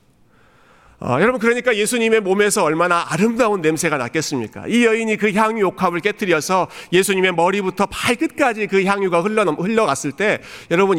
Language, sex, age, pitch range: Korean, male, 40-59, 155-230 Hz